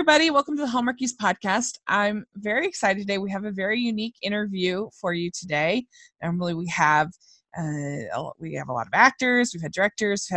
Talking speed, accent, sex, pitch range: 190 wpm, American, female, 175-235 Hz